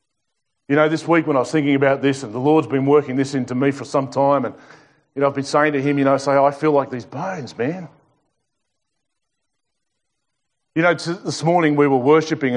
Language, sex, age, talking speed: English, male, 40-59, 215 wpm